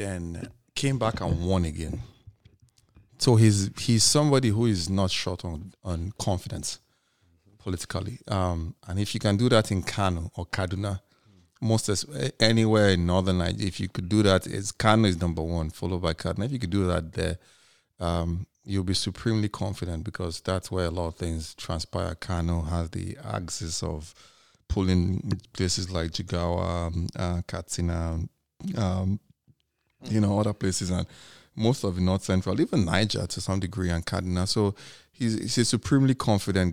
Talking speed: 170 wpm